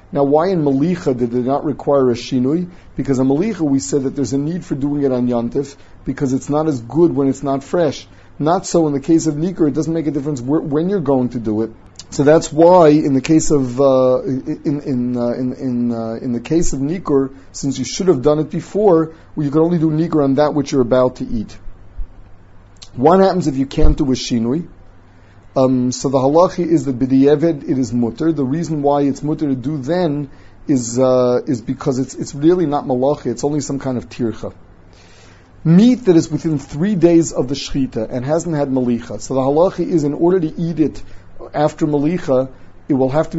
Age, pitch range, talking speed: 40-59, 125-155 Hz, 205 wpm